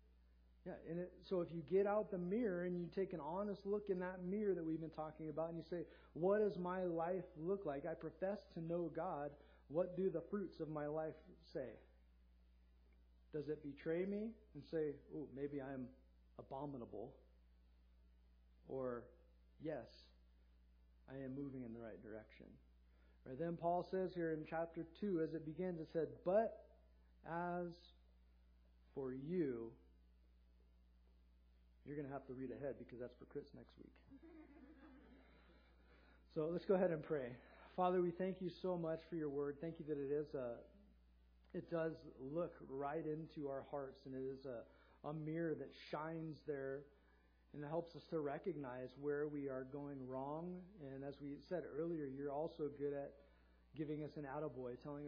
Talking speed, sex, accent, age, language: 170 wpm, male, American, 40-59, English